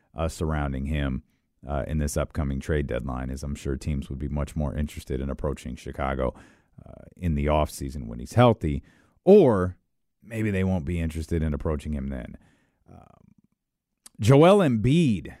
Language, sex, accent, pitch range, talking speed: English, male, American, 80-100 Hz, 160 wpm